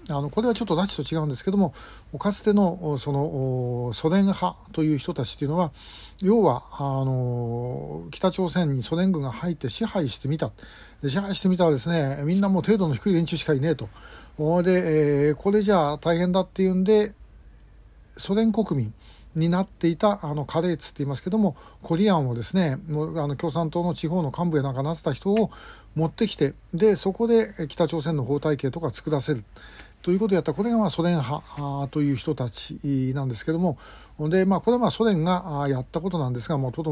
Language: Japanese